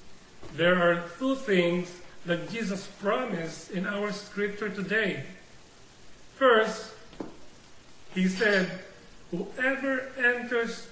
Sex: male